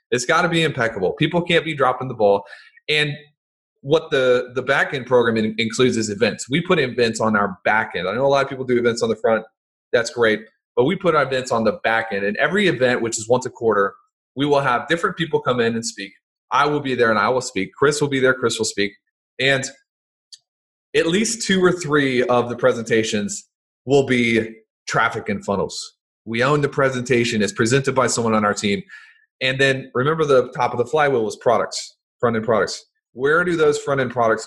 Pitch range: 120-180 Hz